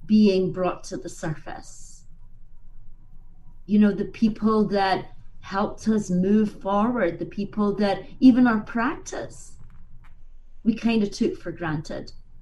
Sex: female